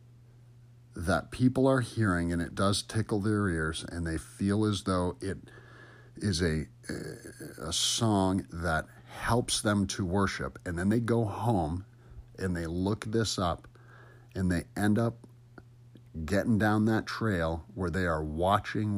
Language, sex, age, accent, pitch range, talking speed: English, male, 50-69, American, 90-120 Hz, 150 wpm